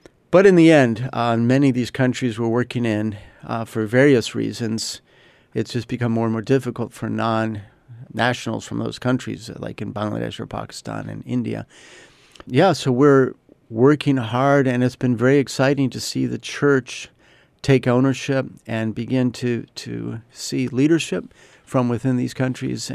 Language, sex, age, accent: English, male, 50-69, American